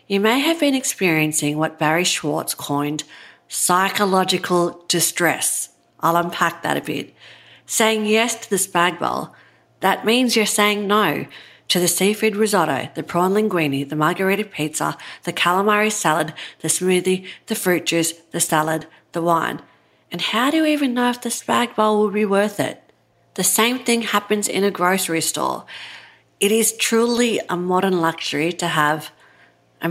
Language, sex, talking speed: English, female, 160 wpm